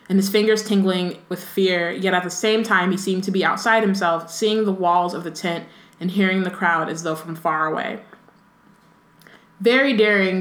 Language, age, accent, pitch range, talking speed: English, 20-39, American, 170-205 Hz, 195 wpm